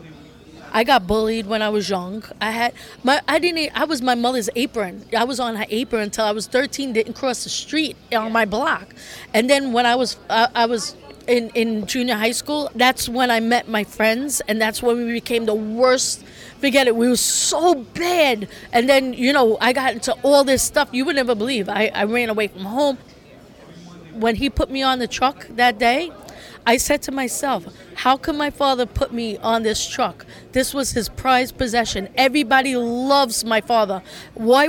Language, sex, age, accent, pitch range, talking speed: English, female, 20-39, American, 220-270 Hz, 195 wpm